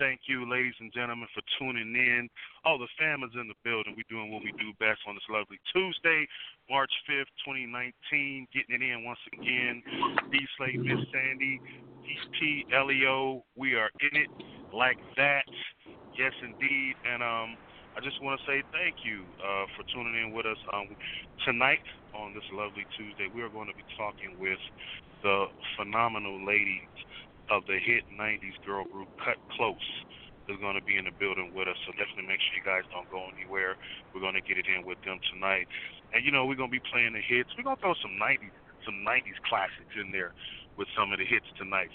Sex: male